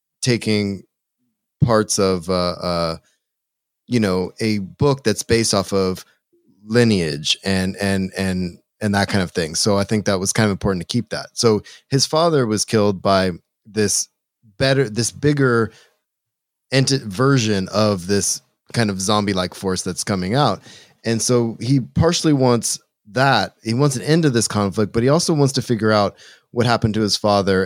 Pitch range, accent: 95-120 Hz, American